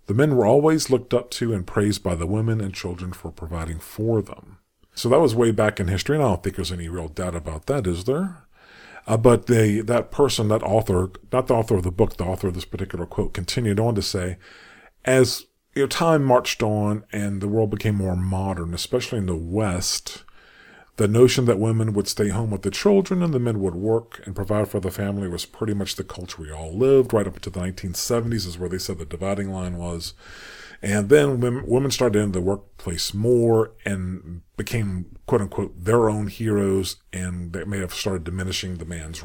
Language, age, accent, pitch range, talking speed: English, 40-59, American, 95-115 Hz, 215 wpm